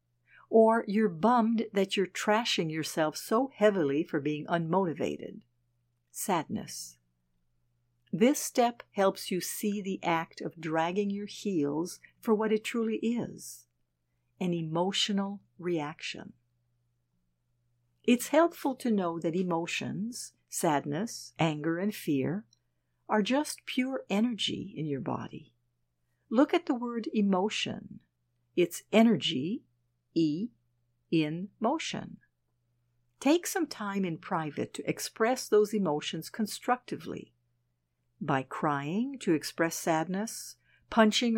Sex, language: female, English